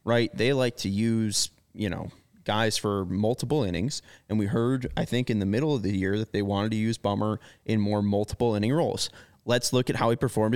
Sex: male